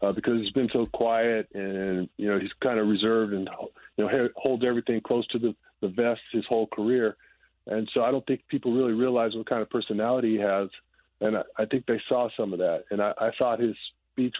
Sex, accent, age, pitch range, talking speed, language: male, American, 40-59, 105-125 Hz, 230 wpm, English